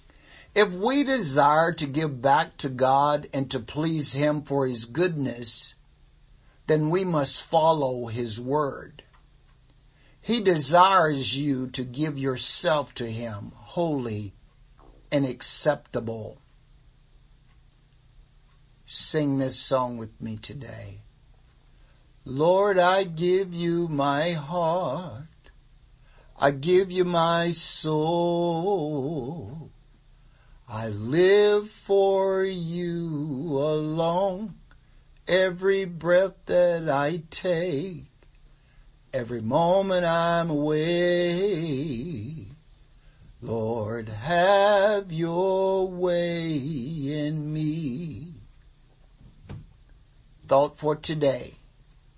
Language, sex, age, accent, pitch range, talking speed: English, male, 60-79, American, 130-165 Hz, 85 wpm